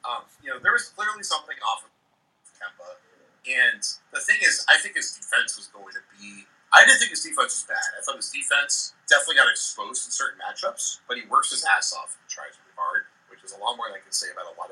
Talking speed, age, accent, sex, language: 250 wpm, 30-49, American, male, English